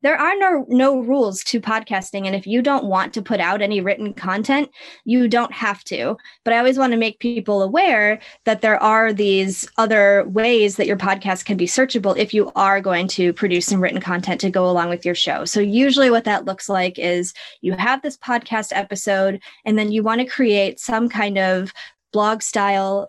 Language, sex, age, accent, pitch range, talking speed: English, female, 20-39, American, 190-240 Hz, 210 wpm